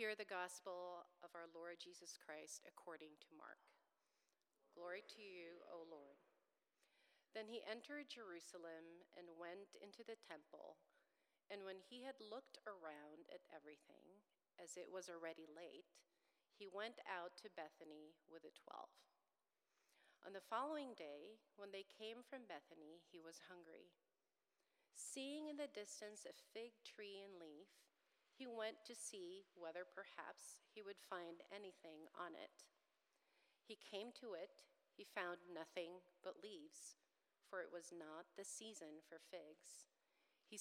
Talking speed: 145 wpm